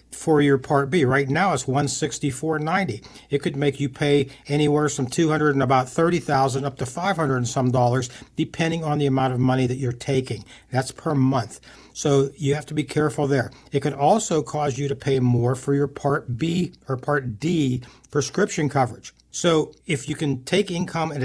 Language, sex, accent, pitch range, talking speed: English, male, American, 130-150 Hz, 190 wpm